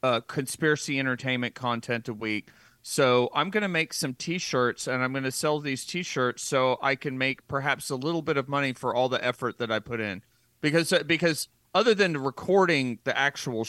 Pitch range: 120-150 Hz